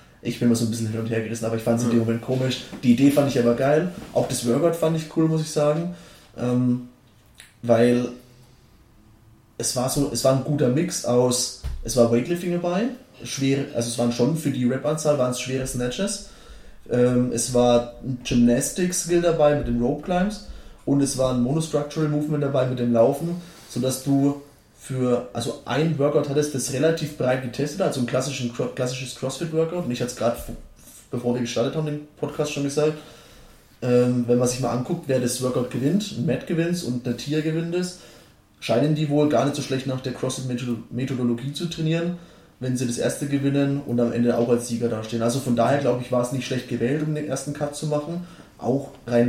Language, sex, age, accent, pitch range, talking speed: German, male, 20-39, German, 120-150 Hz, 205 wpm